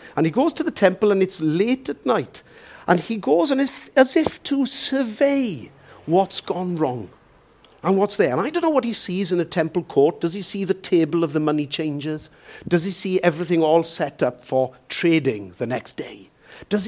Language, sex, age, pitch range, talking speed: English, male, 50-69, 140-205 Hz, 215 wpm